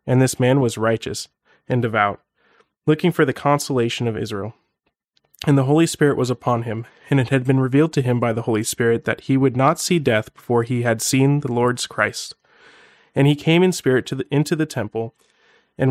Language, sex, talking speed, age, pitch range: English, male, 200 wpm, 30-49, 115-140 Hz